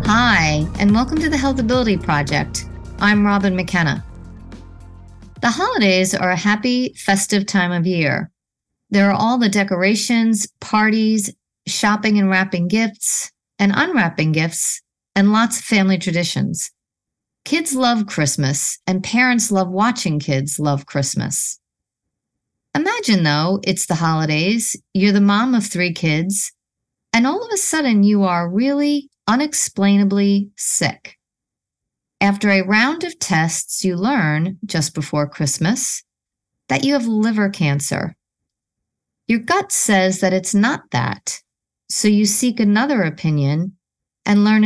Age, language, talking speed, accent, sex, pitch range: 40-59, English, 130 wpm, American, female, 165-220 Hz